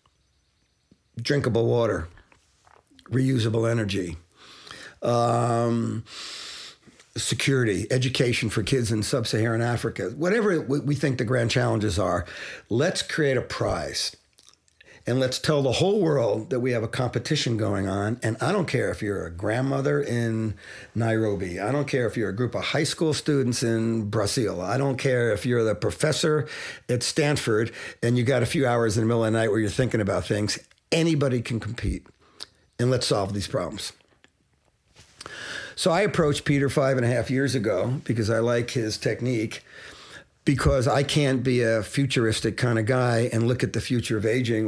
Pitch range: 110-130 Hz